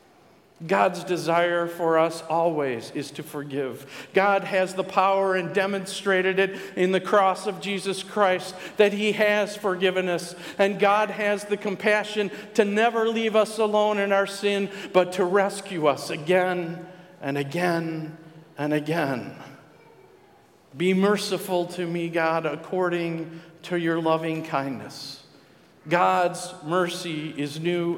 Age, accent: 50-69, American